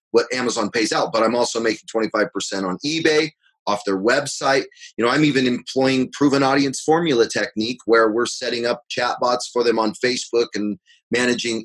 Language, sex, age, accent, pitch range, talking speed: English, male, 30-49, American, 110-140 Hz, 175 wpm